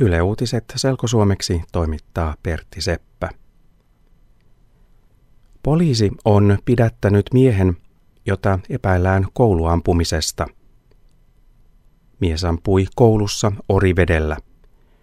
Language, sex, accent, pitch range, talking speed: Finnish, male, native, 90-115 Hz, 65 wpm